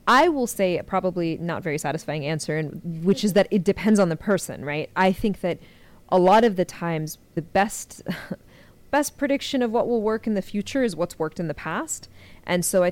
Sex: female